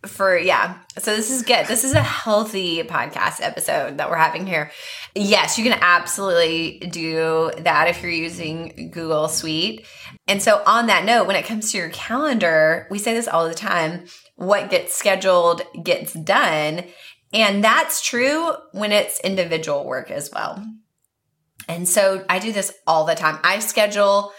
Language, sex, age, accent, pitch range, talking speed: English, female, 20-39, American, 165-205 Hz, 165 wpm